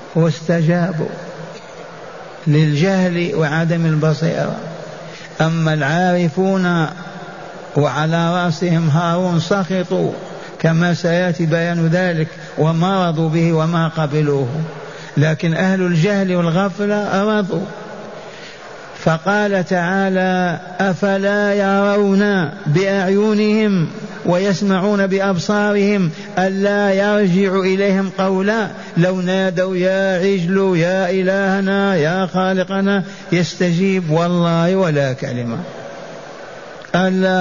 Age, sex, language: 50-69, male, Arabic